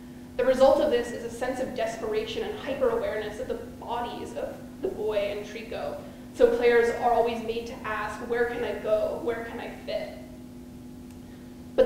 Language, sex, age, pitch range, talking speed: English, female, 20-39, 235-265 Hz, 175 wpm